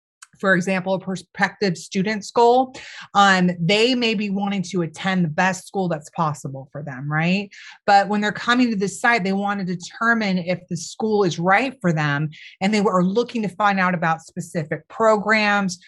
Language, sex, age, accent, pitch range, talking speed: English, female, 30-49, American, 175-215 Hz, 185 wpm